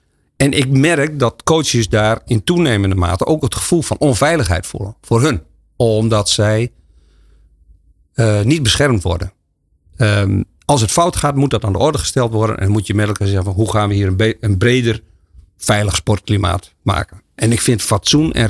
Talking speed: 185 wpm